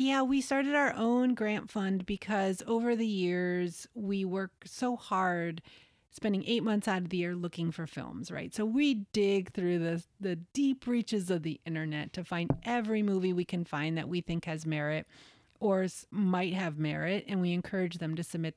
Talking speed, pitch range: 190 wpm, 165-200 Hz